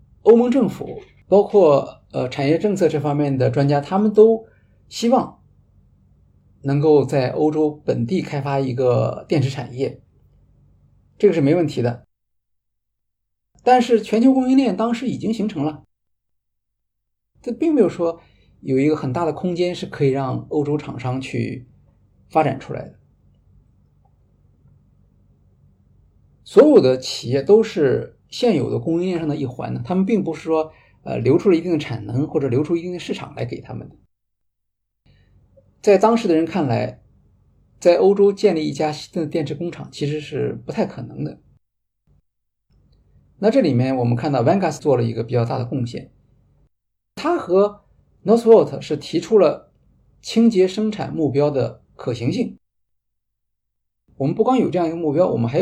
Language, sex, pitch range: Chinese, male, 115-180 Hz